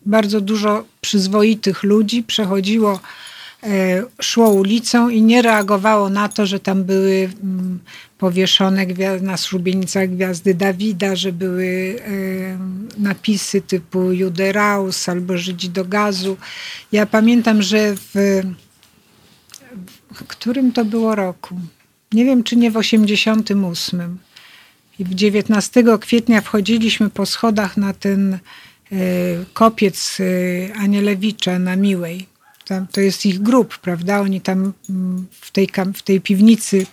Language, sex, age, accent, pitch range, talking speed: Polish, female, 50-69, native, 190-220 Hz, 115 wpm